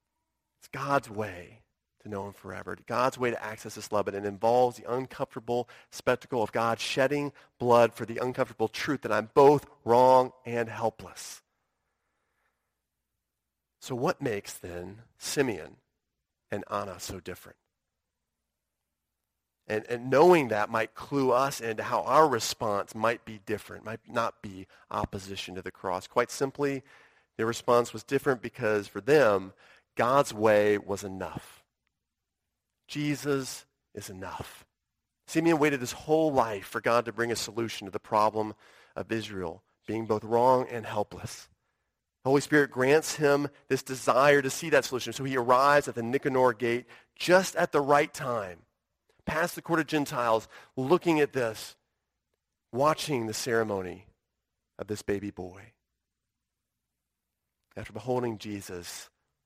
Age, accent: 40-59, American